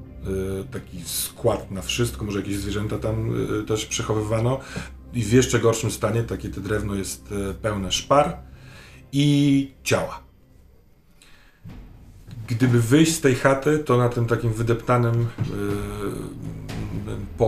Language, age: Polish, 40-59